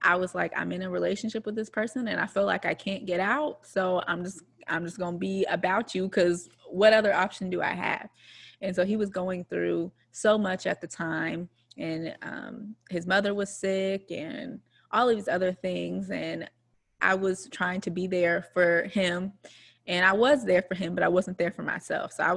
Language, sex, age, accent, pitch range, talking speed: English, female, 20-39, American, 170-195 Hz, 215 wpm